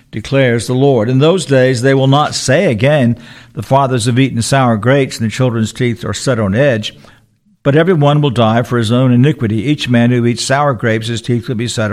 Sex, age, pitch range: male, 60-79, 115-150 Hz